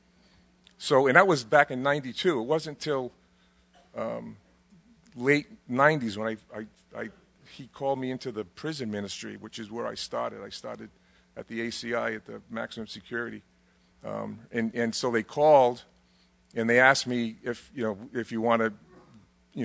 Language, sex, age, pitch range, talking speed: English, male, 40-59, 100-125 Hz, 160 wpm